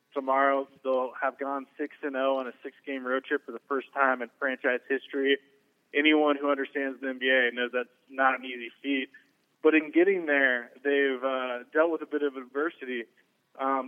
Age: 20-39